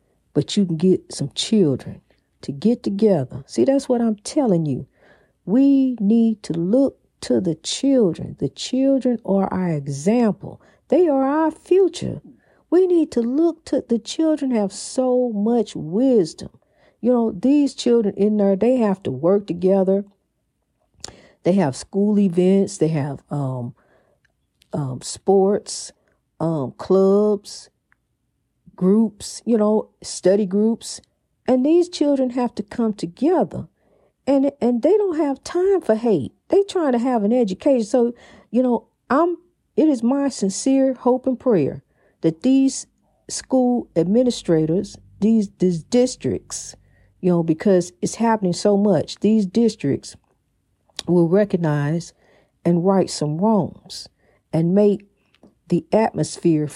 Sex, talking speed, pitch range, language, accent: female, 135 wpm, 180-255 Hz, English, American